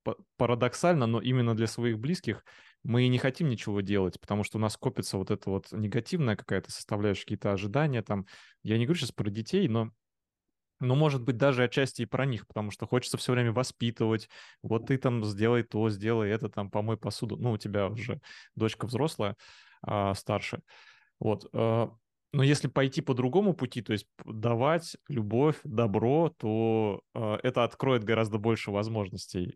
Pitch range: 105-125 Hz